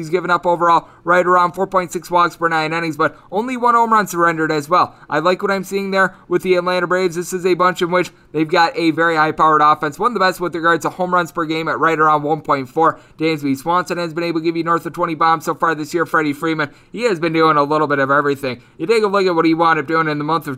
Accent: American